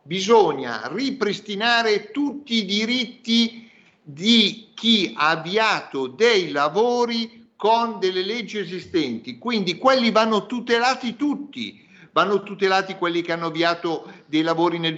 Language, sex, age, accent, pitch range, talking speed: Italian, male, 50-69, native, 165-220 Hz, 115 wpm